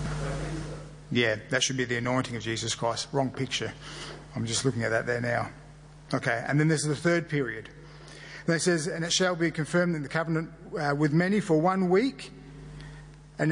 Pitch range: 140-160 Hz